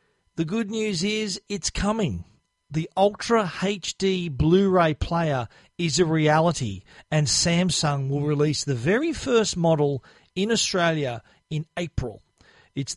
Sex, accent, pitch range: male, Australian, 140-185 Hz